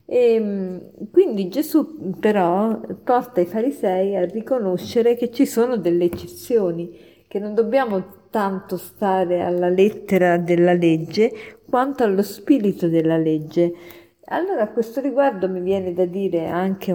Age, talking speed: 50-69, 125 wpm